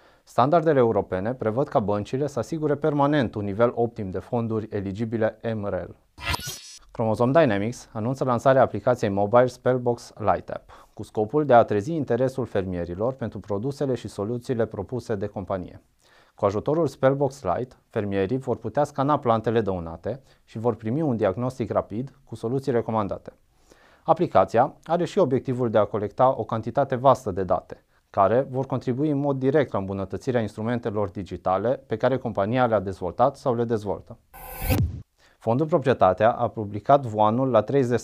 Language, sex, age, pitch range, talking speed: Romanian, male, 30-49, 105-130 Hz, 150 wpm